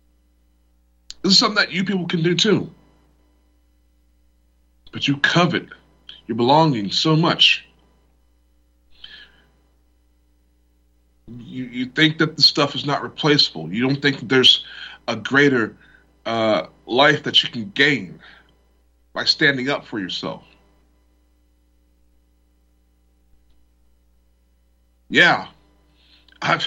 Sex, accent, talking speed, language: male, American, 100 wpm, English